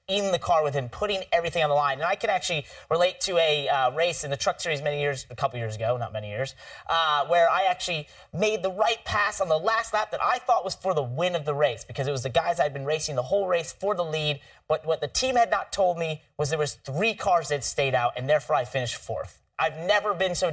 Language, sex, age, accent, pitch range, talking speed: English, male, 30-49, American, 145-190 Hz, 270 wpm